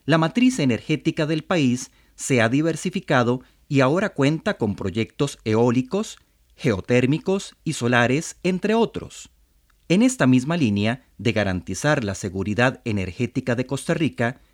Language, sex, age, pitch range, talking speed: Spanish, male, 40-59, 105-160 Hz, 130 wpm